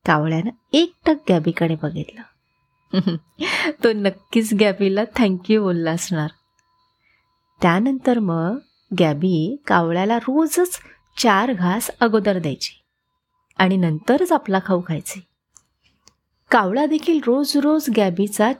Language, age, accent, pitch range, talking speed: Marathi, 30-49, native, 175-285 Hz, 95 wpm